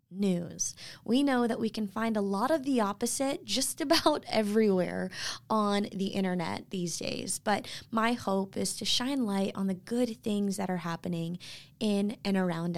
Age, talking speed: 20-39, 175 wpm